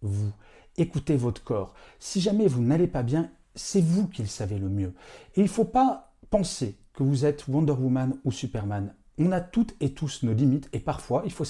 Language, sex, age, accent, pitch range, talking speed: French, male, 40-59, French, 110-155 Hz, 215 wpm